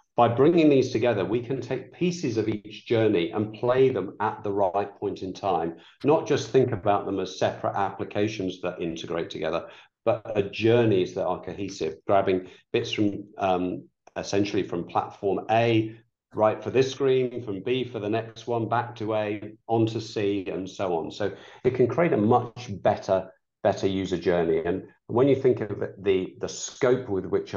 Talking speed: 180 wpm